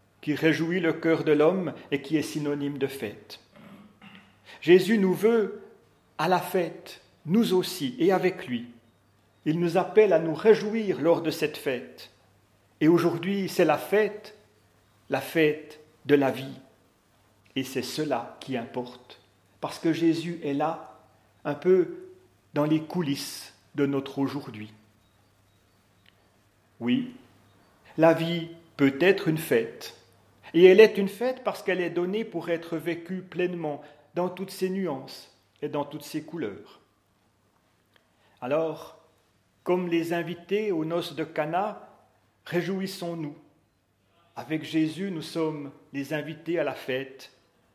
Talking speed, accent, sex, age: 135 wpm, French, male, 40-59